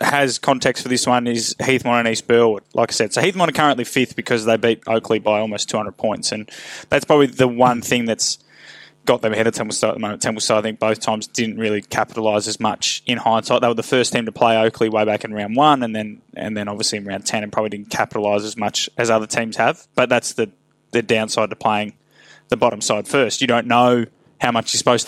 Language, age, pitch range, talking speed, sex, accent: English, 10-29, 110-130 Hz, 245 wpm, male, Australian